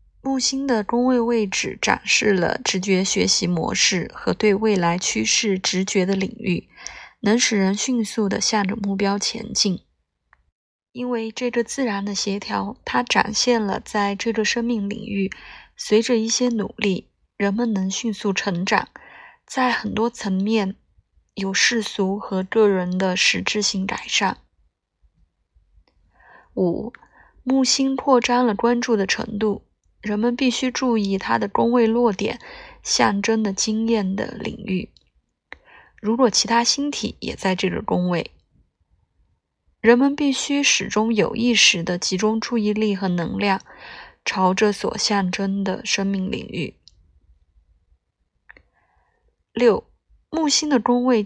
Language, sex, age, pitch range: Chinese, female, 20-39, 190-235 Hz